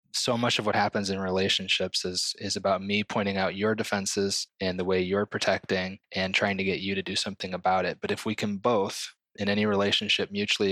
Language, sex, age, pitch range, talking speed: English, male, 20-39, 95-110 Hz, 220 wpm